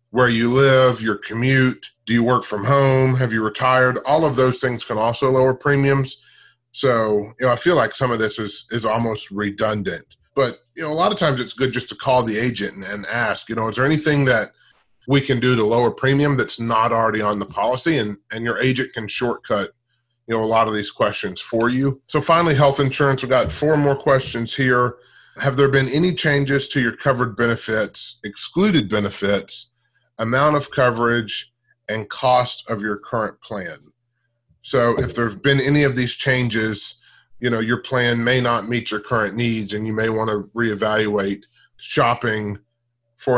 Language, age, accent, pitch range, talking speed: English, 30-49, American, 110-130 Hz, 195 wpm